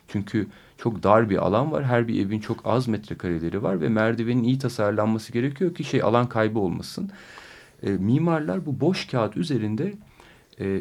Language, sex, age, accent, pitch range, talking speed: Turkish, male, 40-59, native, 95-130 Hz, 165 wpm